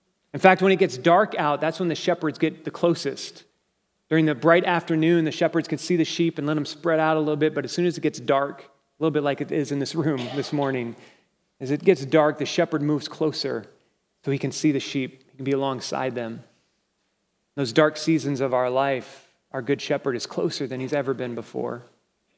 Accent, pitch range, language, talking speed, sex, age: American, 130-155 Hz, English, 230 wpm, male, 30-49